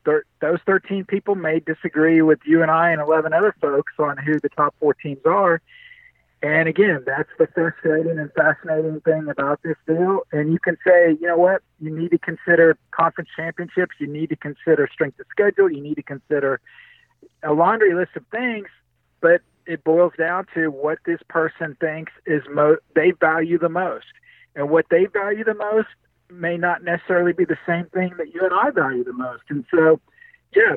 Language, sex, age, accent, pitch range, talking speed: English, male, 50-69, American, 155-185 Hz, 195 wpm